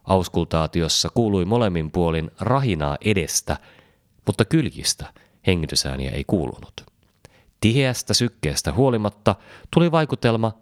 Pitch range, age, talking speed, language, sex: 85-115 Hz, 30-49, 90 wpm, Finnish, male